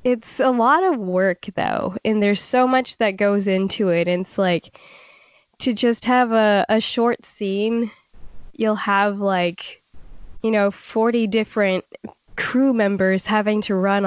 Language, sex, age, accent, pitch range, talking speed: English, female, 10-29, American, 185-220 Hz, 150 wpm